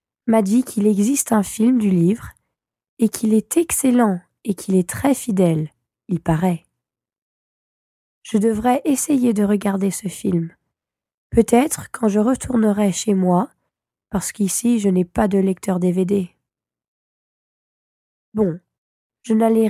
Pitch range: 195-235 Hz